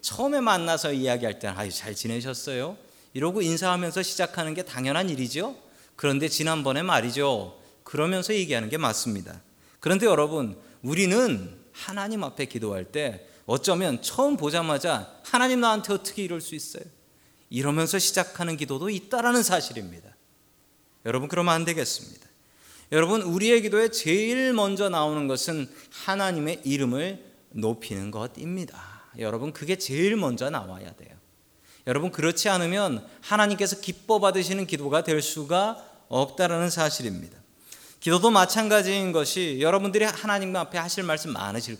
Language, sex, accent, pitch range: Korean, male, native, 140-200 Hz